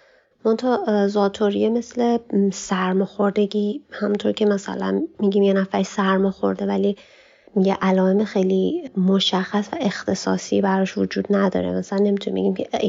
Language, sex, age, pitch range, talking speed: Persian, female, 20-39, 180-200 Hz, 115 wpm